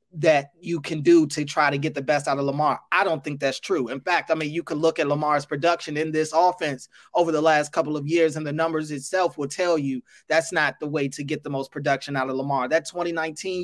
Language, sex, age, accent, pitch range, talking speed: English, male, 20-39, American, 150-195 Hz, 255 wpm